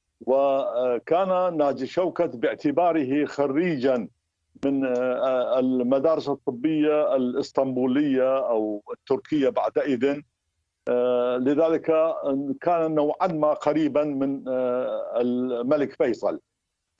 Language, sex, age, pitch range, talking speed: Arabic, male, 50-69, 125-160 Hz, 70 wpm